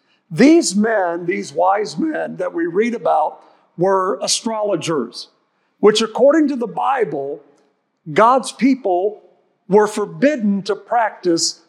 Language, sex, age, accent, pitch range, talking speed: English, male, 50-69, American, 180-220 Hz, 115 wpm